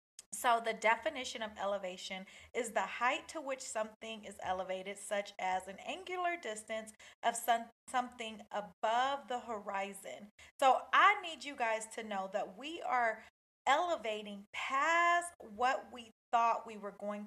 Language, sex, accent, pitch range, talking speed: English, female, American, 220-290 Hz, 145 wpm